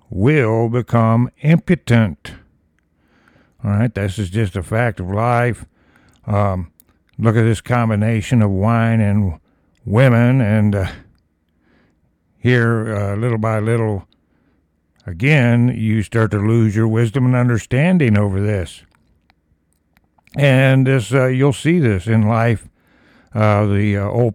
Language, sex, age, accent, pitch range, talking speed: English, male, 60-79, American, 100-120 Hz, 125 wpm